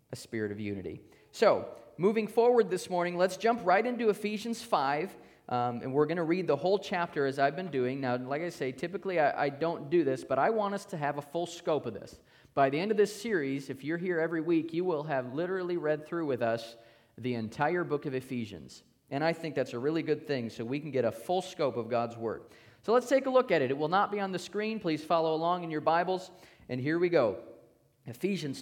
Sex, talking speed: male, 240 wpm